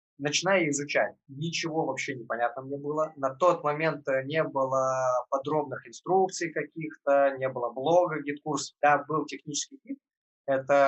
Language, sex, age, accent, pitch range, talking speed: Russian, male, 20-39, native, 135-160 Hz, 130 wpm